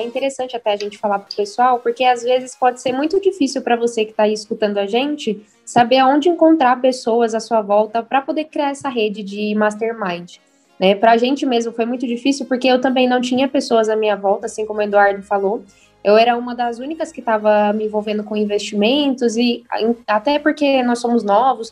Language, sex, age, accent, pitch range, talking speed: Portuguese, female, 10-29, Brazilian, 215-265 Hz, 215 wpm